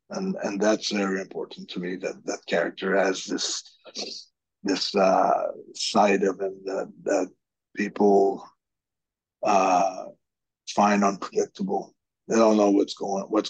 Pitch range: 100-120 Hz